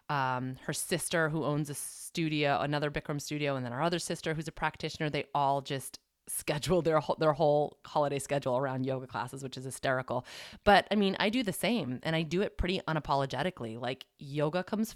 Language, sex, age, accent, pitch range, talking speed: English, female, 20-39, American, 135-170 Hz, 195 wpm